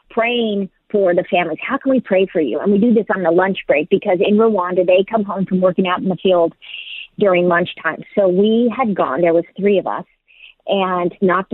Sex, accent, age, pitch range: female, American, 40-59, 180-225 Hz